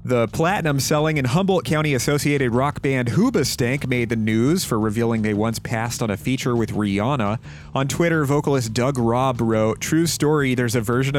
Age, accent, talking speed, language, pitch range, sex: 30-49, American, 170 wpm, English, 105-145 Hz, male